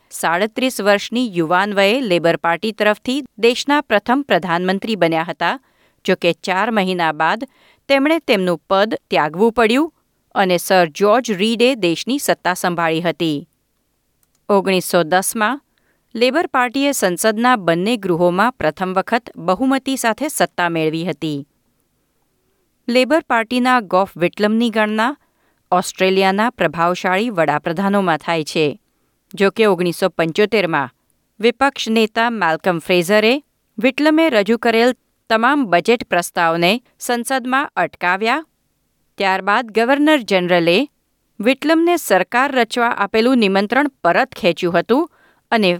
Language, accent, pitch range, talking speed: Gujarati, native, 175-240 Hz, 105 wpm